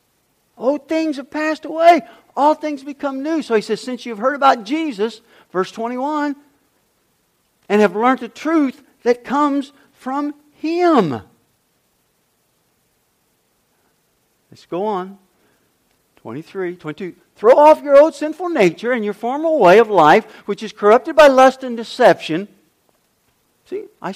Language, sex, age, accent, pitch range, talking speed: English, male, 50-69, American, 240-320 Hz, 135 wpm